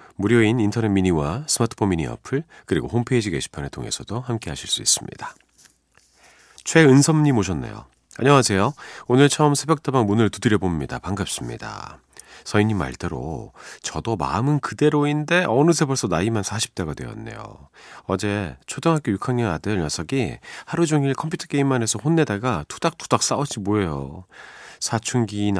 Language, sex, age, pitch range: Korean, male, 40-59, 95-135 Hz